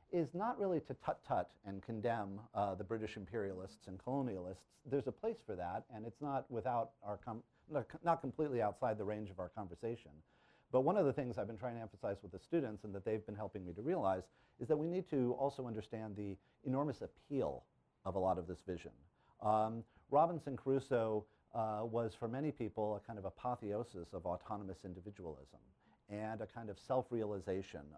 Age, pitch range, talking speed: 40-59, 100-130 Hz, 185 wpm